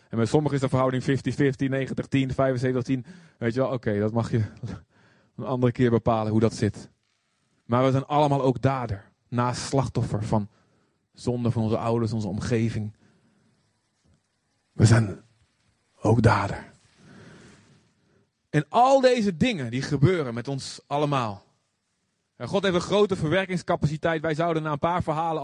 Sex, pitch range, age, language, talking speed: male, 130-210 Hz, 30-49, Dutch, 155 wpm